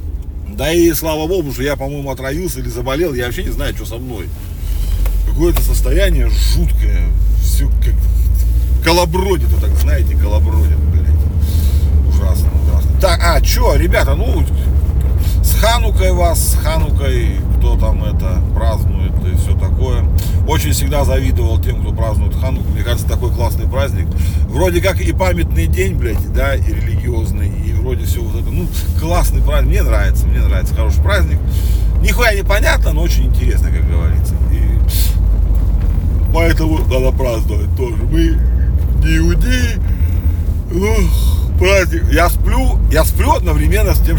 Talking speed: 135 wpm